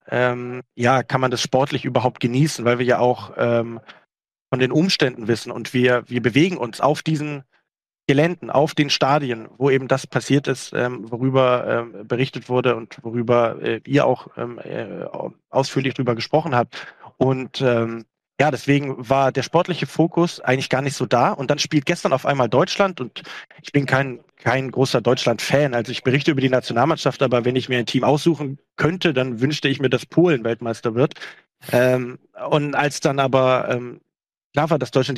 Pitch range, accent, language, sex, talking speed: 125-150 Hz, German, German, male, 185 wpm